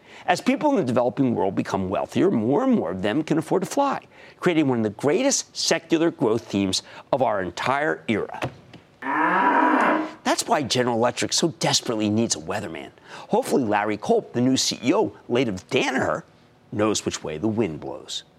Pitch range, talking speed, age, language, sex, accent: 110-170 Hz, 175 wpm, 50-69, English, male, American